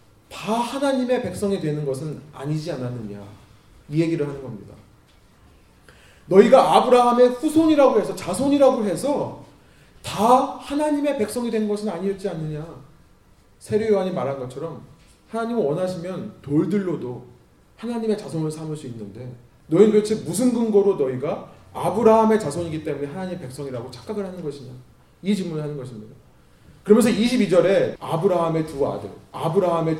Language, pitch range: Korean, 135-210 Hz